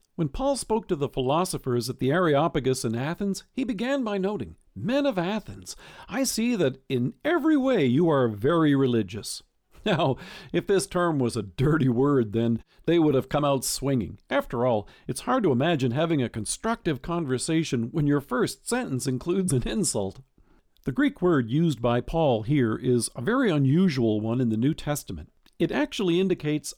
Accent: American